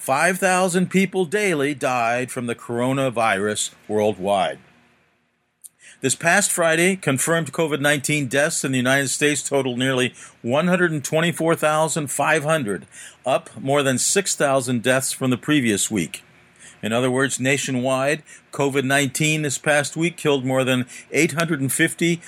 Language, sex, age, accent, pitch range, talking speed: English, male, 50-69, American, 130-165 Hz, 115 wpm